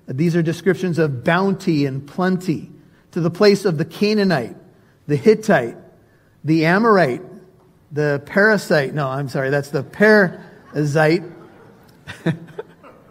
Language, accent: English, American